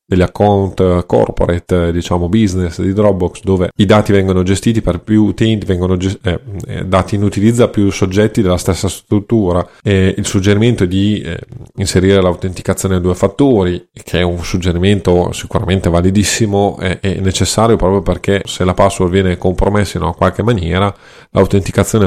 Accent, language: native, Italian